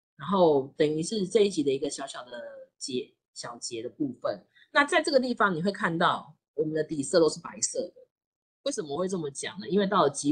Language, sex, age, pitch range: Chinese, female, 20-39, 155-220 Hz